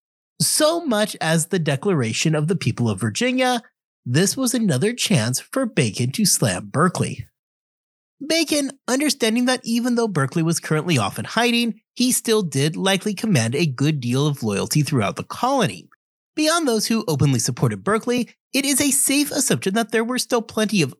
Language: English